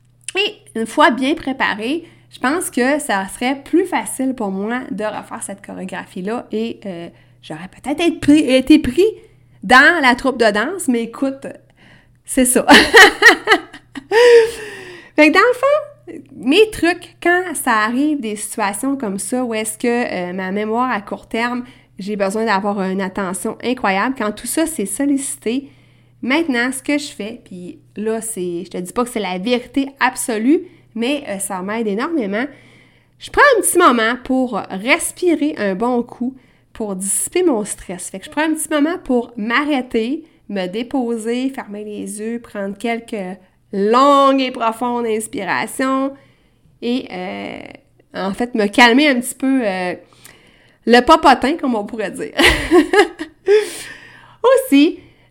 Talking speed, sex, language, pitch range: 155 wpm, female, French, 210-295 Hz